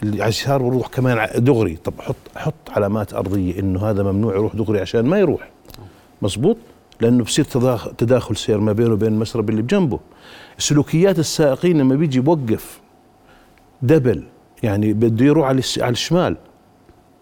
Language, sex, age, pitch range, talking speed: Arabic, male, 50-69, 115-160 Hz, 140 wpm